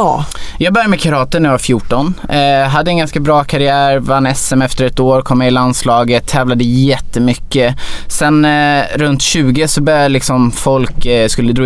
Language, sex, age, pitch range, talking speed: English, male, 20-39, 125-155 Hz, 175 wpm